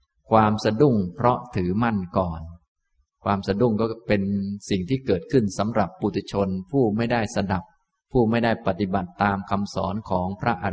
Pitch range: 100-125 Hz